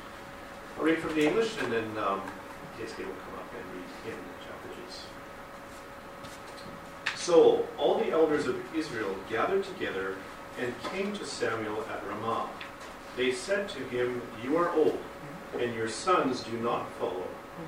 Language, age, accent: Japanese, 50-69, American